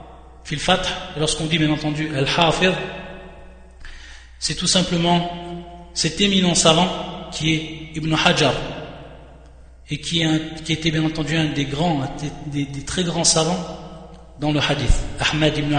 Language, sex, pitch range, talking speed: French, male, 150-175 Hz, 135 wpm